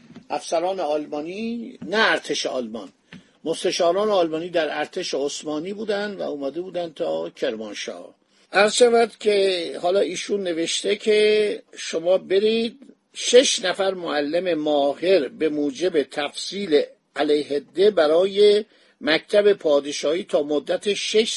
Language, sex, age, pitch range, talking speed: Persian, male, 50-69, 150-210 Hz, 105 wpm